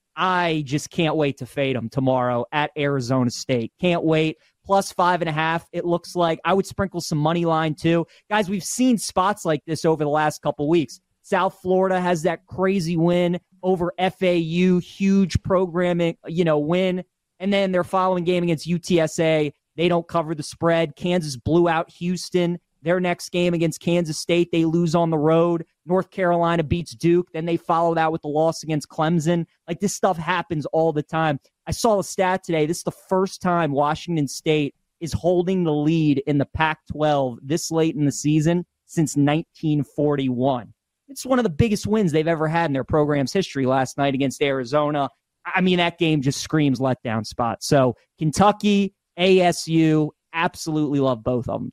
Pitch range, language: 150-180 Hz, English